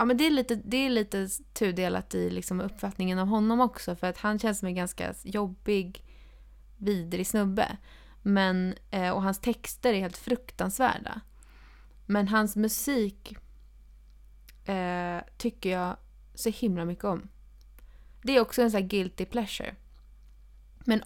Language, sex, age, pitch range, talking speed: Swedish, female, 20-39, 175-220 Hz, 140 wpm